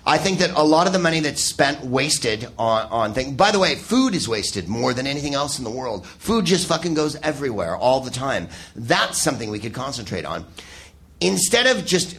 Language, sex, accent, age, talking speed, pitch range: English, male, American, 40-59, 215 wpm, 140-190 Hz